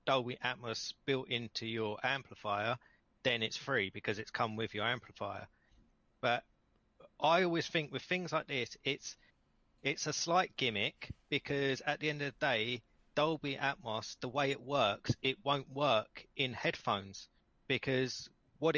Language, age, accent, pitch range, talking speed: English, 30-49, British, 115-140 Hz, 155 wpm